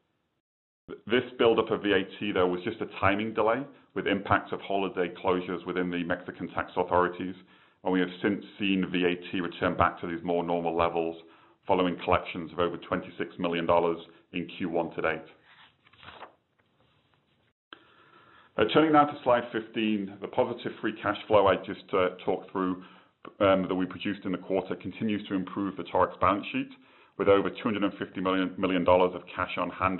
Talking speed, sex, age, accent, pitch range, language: 160 wpm, male, 30-49, British, 90-100 Hz, English